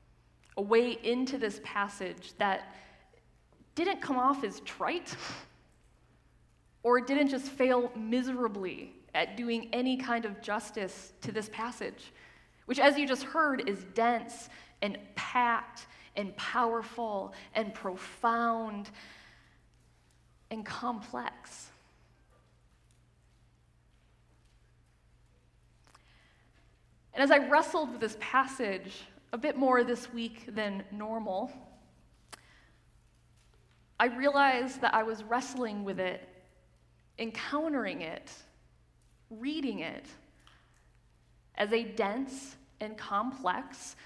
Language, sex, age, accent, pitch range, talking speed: English, female, 20-39, American, 200-260 Hz, 100 wpm